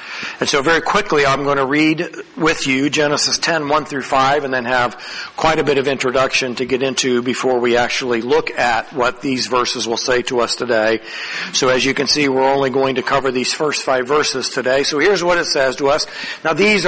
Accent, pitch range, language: American, 135-165 Hz, English